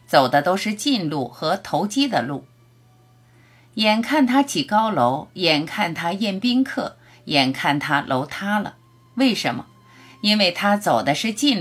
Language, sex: Chinese, female